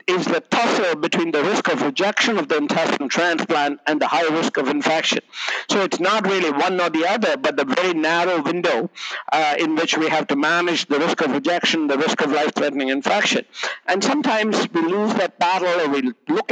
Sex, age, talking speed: male, 60-79, 205 wpm